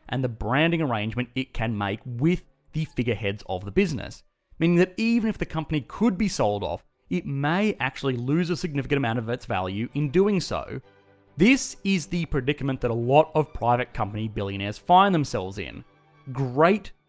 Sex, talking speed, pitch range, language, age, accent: male, 180 wpm, 115-165 Hz, English, 30-49, Australian